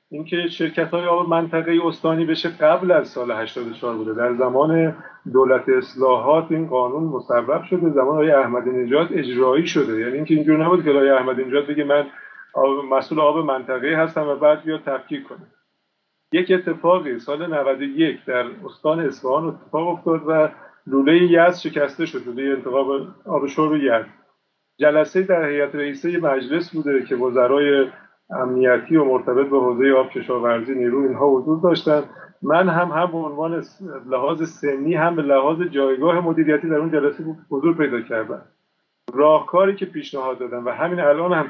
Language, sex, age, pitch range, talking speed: Persian, male, 50-69, 135-170 Hz, 160 wpm